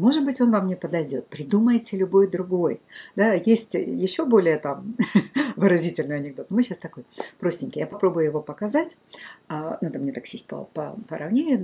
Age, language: 50-69, Russian